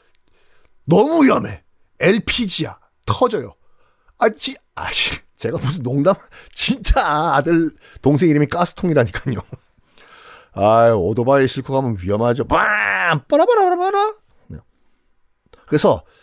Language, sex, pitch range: Korean, male, 115-190 Hz